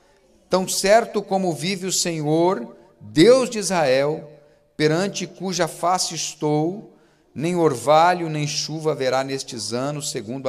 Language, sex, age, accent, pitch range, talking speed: Portuguese, male, 50-69, Brazilian, 130-180 Hz, 120 wpm